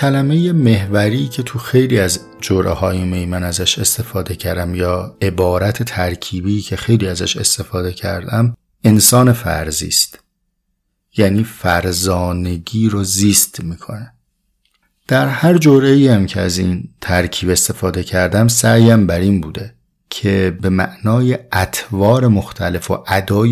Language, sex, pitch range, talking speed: Persian, male, 90-120 Hz, 125 wpm